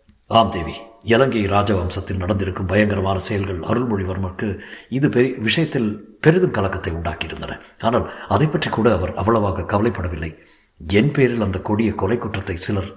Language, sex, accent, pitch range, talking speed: Tamil, male, native, 95-120 Hz, 130 wpm